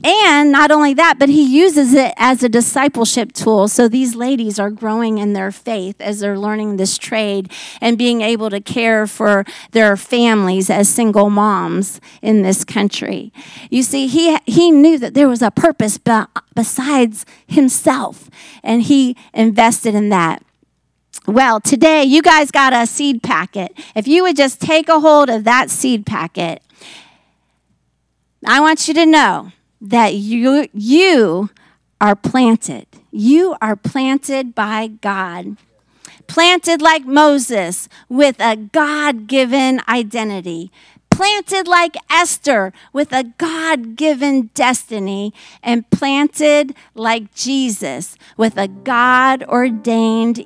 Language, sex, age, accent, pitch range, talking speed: English, female, 40-59, American, 215-285 Hz, 130 wpm